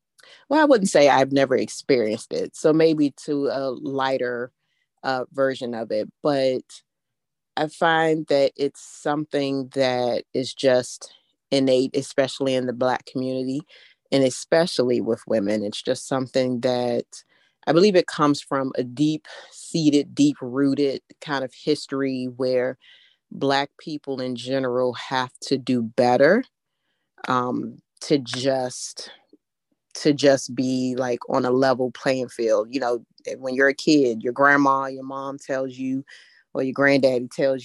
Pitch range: 125-145 Hz